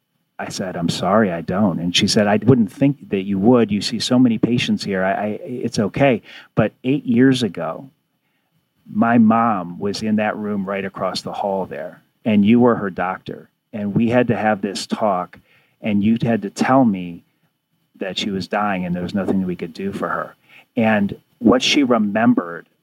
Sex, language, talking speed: male, English, 190 wpm